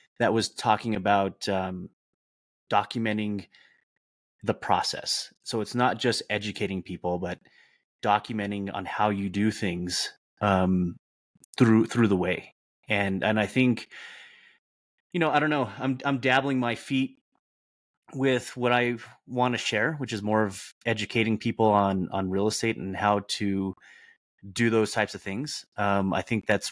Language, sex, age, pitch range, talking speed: English, male, 30-49, 95-115 Hz, 155 wpm